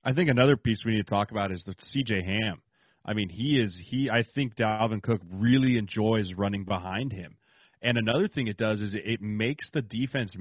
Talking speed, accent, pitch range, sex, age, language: 215 wpm, American, 105-130 Hz, male, 30-49, English